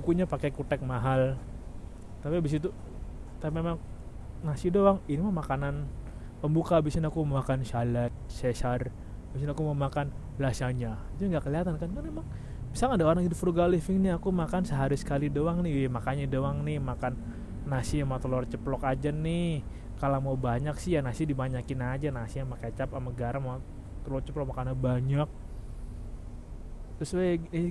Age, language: 20-39, Indonesian